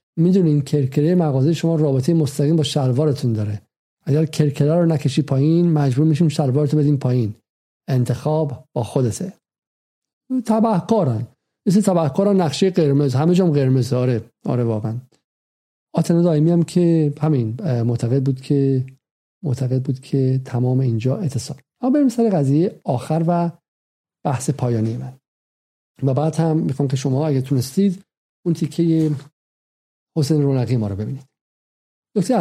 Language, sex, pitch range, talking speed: Persian, male, 130-165 Hz, 130 wpm